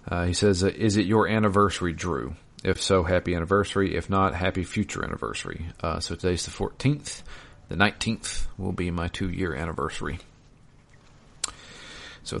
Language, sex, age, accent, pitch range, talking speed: English, male, 40-59, American, 90-110 Hz, 150 wpm